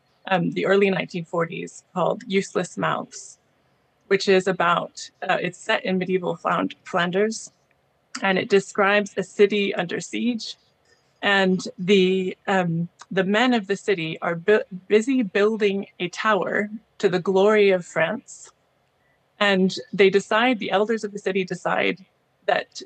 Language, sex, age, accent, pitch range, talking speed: English, female, 20-39, American, 185-215 Hz, 140 wpm